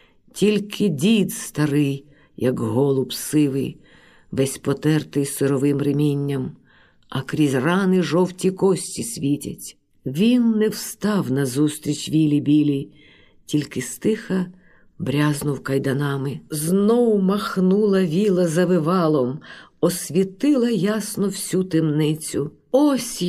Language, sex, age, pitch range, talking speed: Ukrainian, female, 50-69, 140-190 Hz, 90 wpm